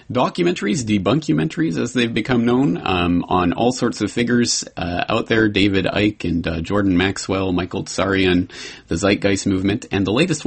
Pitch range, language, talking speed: 90-120 Hz, English, 165 wpm